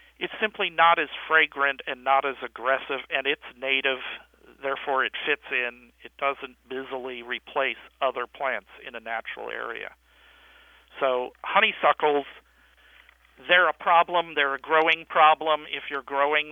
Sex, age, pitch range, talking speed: male, 50-69, 125-145 Hz, 140 wpm